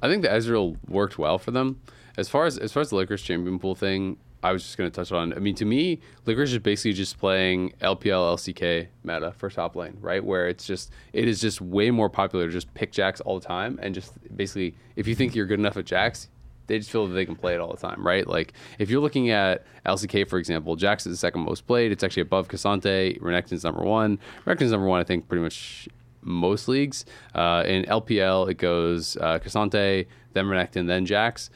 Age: 20-39